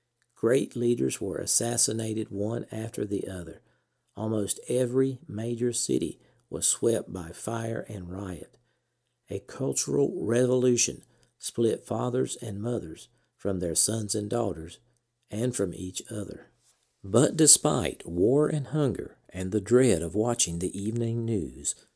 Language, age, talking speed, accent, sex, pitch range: English, 50-69, 130 wpm, American, male, 90-120 Hz